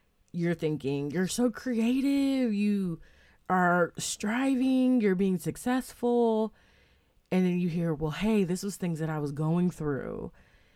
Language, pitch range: English, 140-185 Hz